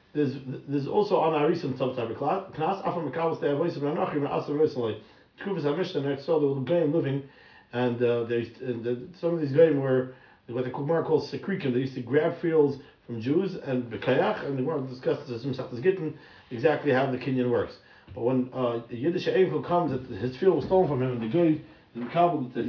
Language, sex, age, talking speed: English, male, 50-69, 210 wpm